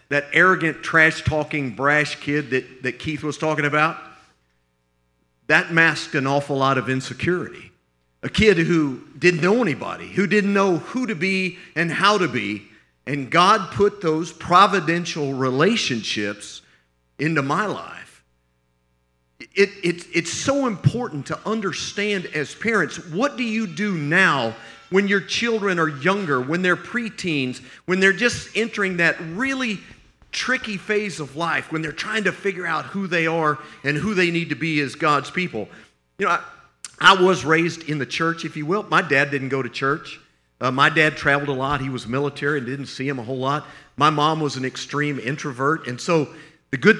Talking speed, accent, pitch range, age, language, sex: 170 wpm, American, 130-180 Hz, 50-69, English, male